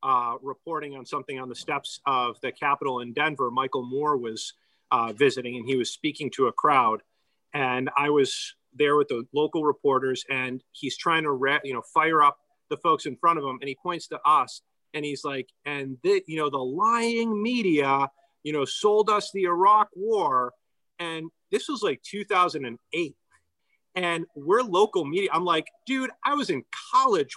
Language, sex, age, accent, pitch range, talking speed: English, male, 30-49, American, 140-220 Hz, 185 wpm